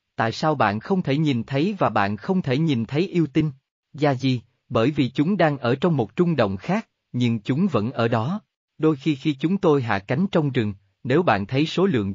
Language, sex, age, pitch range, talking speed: Vietnamese, male, 20-39, 120-160 Hz, 225 wpm